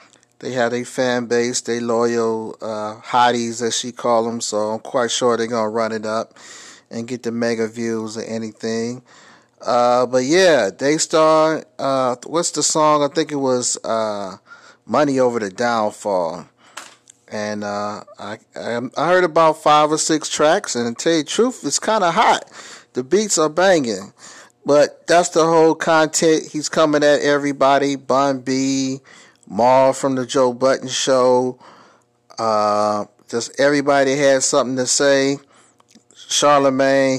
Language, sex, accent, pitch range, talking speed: English, male, American, 115-140 Hz, 155 wpm